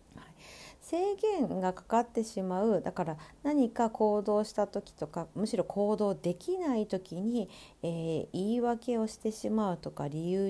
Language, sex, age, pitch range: Japanese, female, 50-69, 155-215 Hz